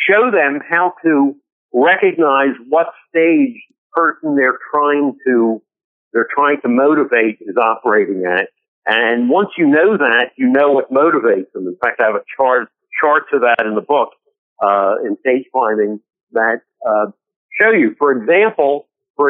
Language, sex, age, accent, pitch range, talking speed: English, male, 60-79, American, 125-195 Hz, 160 wpm